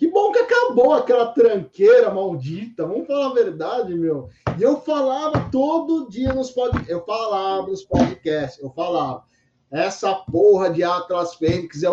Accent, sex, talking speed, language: Brazilian, male, 155 wpm, Portuguese